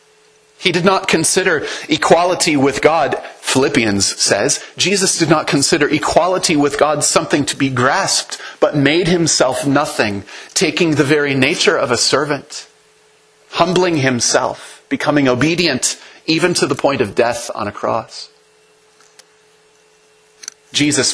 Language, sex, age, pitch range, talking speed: English, male, 30-49, 125-180 Hz, 130 wpm